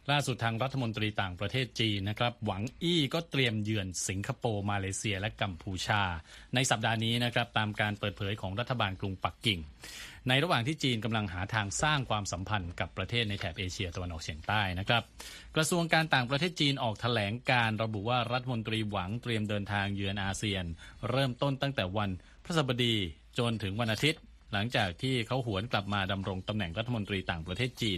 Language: Thai